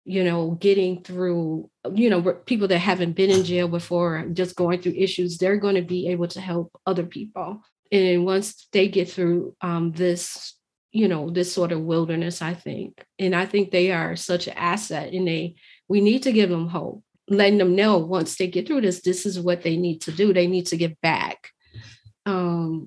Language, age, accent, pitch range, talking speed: English, 40-59, American, 175-195 Hz, 205 wpm